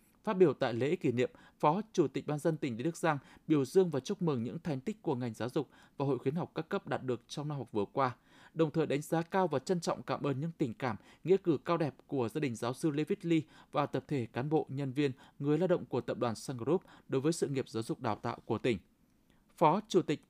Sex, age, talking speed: male, 20-39, 270 wpm